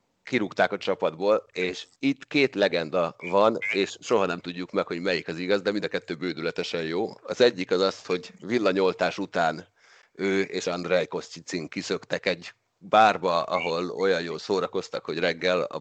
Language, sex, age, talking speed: Hungarian, male, 30-49, 165 wpm